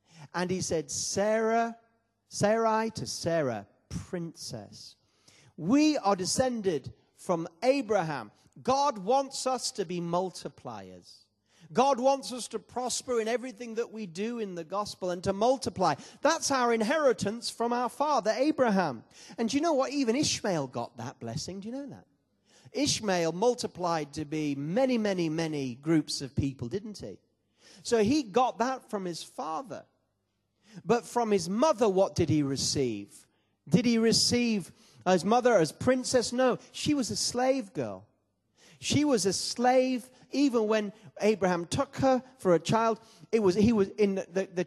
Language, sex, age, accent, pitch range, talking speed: English, male, 40-59, British, 165-240 Hz, 155 wpm